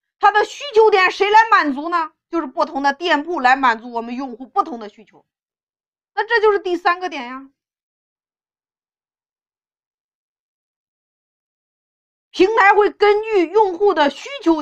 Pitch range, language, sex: 275-400 Hz, Chinese, female